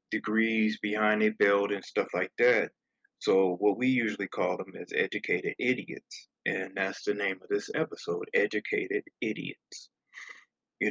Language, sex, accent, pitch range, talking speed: English, male, American, 105-145 Hz, 150 wpm